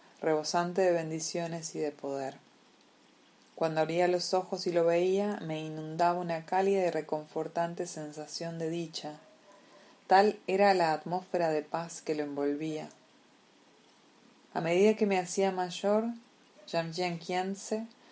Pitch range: 150-175 Hz